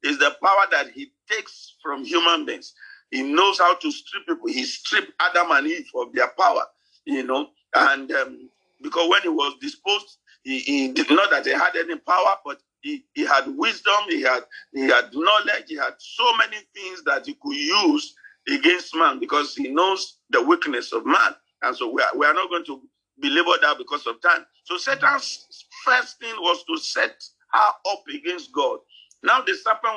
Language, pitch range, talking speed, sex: English, 265-365 Hz, 195 wpm, male